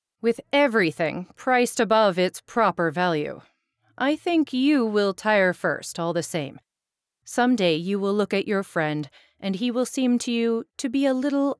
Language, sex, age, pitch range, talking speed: English, female, 40-59, 180-240 Hz, 175 wpm